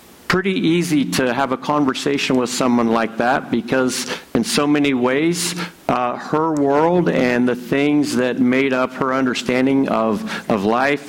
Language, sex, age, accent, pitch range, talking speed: English, male, 60-79, American, 125-150 Hz, 155 wpm